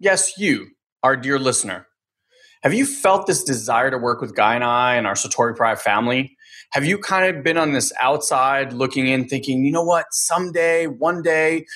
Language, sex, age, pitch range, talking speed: English, male, 30-49, 135-185 Hz, 195 wpm